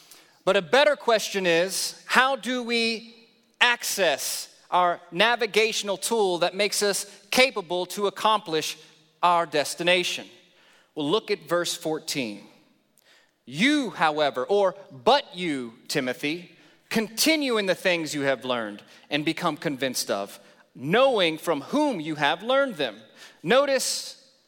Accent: American